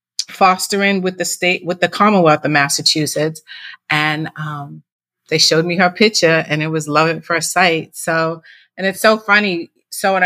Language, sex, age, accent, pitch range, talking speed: English, female, 30-49, American, 160-195 Hz, 175 wpm